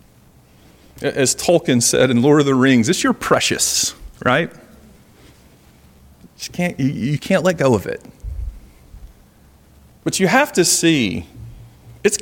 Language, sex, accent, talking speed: English, male, American, 125 wpm